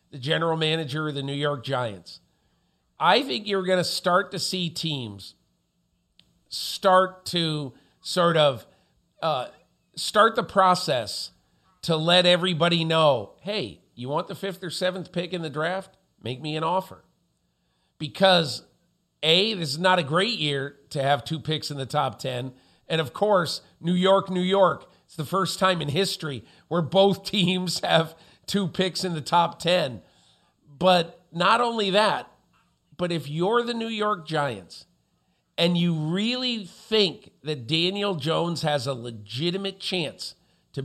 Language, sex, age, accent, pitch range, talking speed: English, male, 50-69, American, 145-185 Hz, 155 wpm